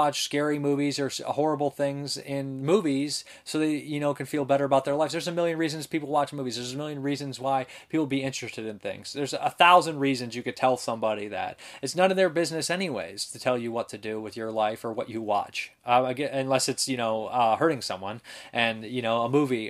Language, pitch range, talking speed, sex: English, 125-160 Hz, 235 wpm, male